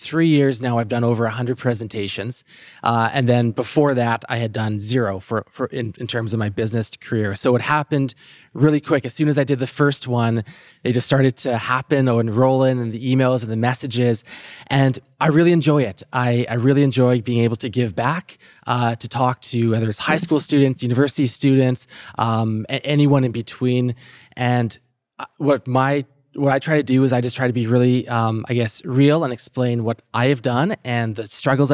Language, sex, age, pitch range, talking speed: English, male, 20-39, 115-135 Hz, 205 wpm